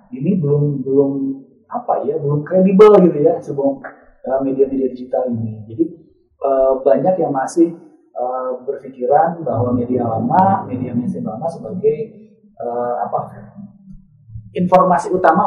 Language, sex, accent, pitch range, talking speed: Indonesian, male, native, 130-200 Hz, 120 wpm